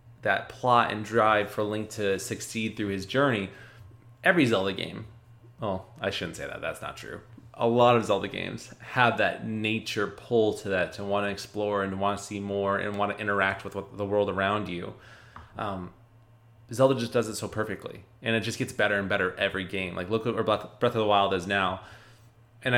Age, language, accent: 20-39, English, American